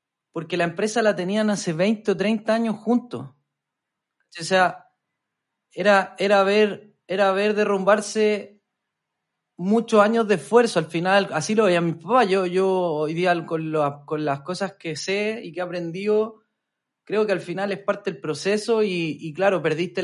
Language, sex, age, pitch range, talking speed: Spanish, male, 30-49, 155-205 Hz, 170 wpm